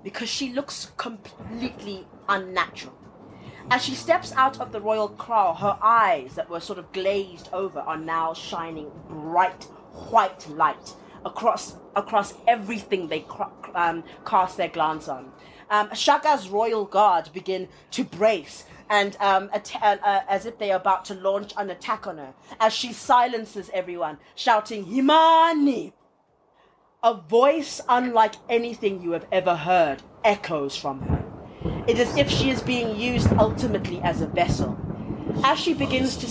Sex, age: female, 30-49